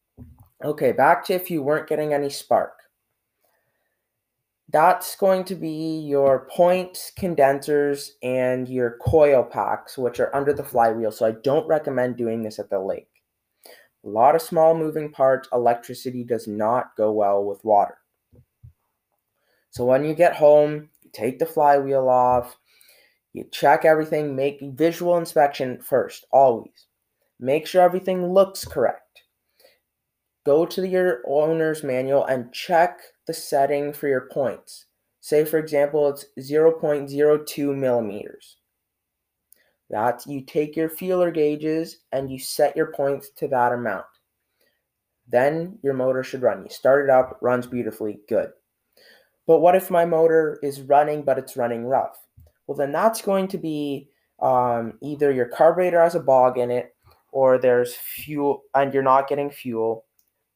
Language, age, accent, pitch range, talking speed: English, 20-39, American, 125-160 Hz, 145 wpm